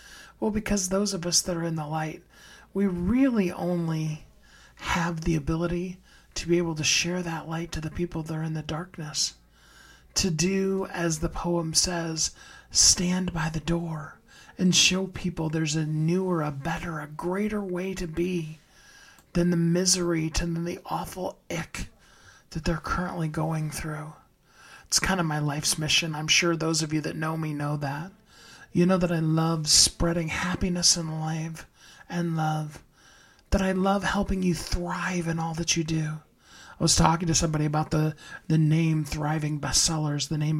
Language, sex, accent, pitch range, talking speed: English, male, American, 155-185 Hz, 175 wpm